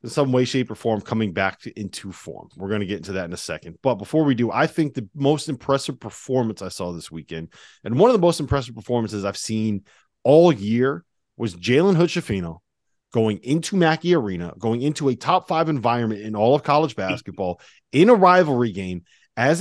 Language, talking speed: English, 205 wpm